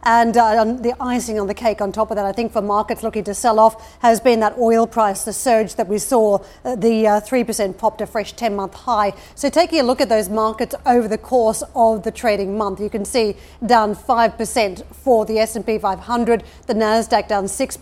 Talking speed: 220 wpm